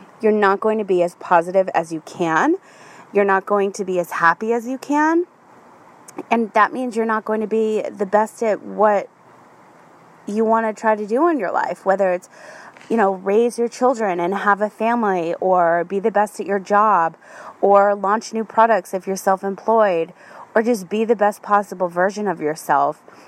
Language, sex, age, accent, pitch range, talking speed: English, female, 20-39, American, 180-225 Hz, 195 wpm